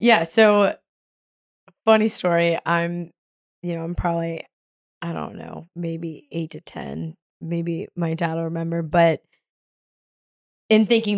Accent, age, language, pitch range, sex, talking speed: American, 20-39, English, 160-185 Hz, female, 125 wpm